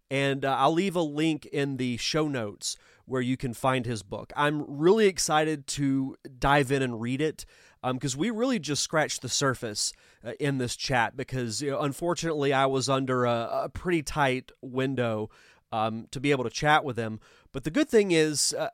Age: 30-49